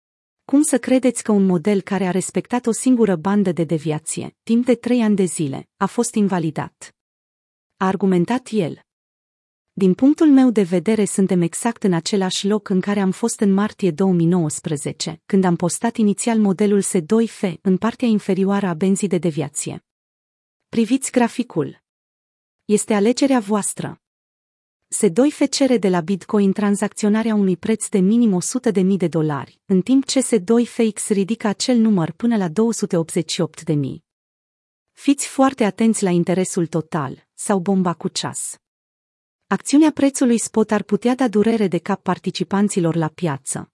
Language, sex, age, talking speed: Romanian, female, 30-49, 150 wpm